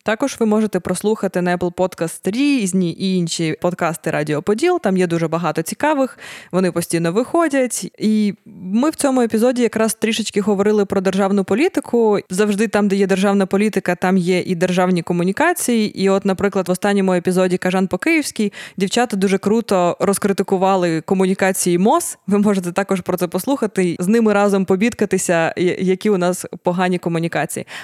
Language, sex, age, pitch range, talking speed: Ukrainian, female, 20-39, 175-205 Hz, 155 wpm